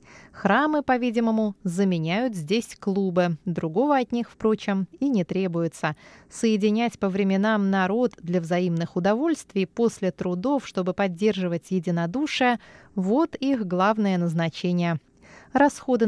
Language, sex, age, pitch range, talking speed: Russian, female, 20-39, 175-235 Hz, 110 wpm